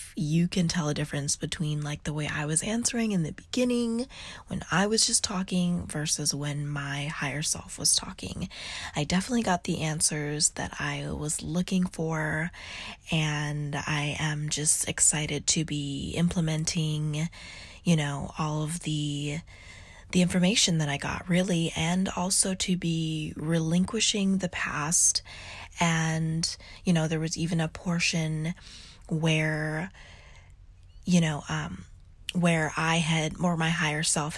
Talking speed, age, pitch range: 145 wpm, 20-39, 150-175 Hz